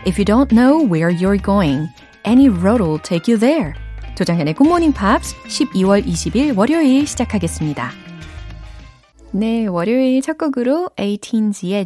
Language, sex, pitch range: Korean, female, 165-260 Hz